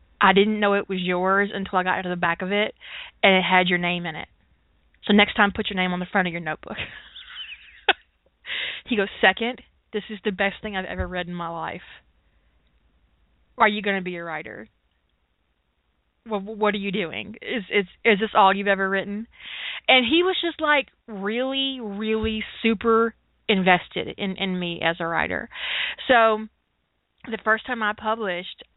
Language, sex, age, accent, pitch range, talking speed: English, female, 30-49, American, 180-225 Hz, 180 wpm